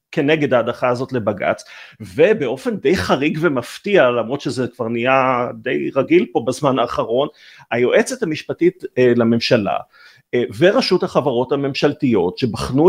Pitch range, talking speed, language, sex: 125-175 Hz, 120 wpm, Hebrew, male